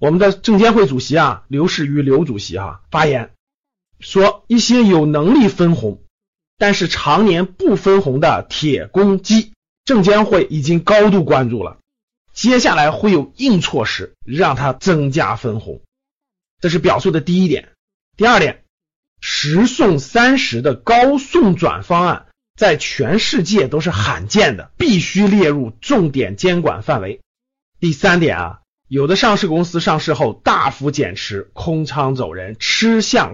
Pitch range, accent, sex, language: 135-205 Hz, native, male, Chinese